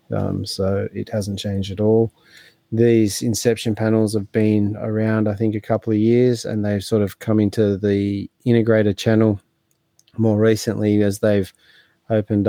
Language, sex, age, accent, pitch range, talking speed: English, male, 20-39, Australian, 100-115 Hz, 160 wpm